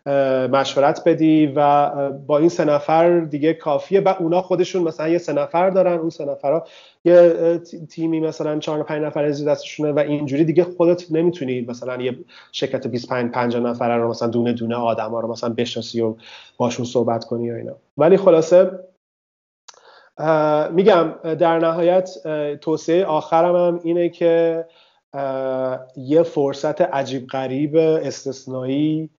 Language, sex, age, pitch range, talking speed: Persian, male, 30-49, 135-165 Hz, 140 wpm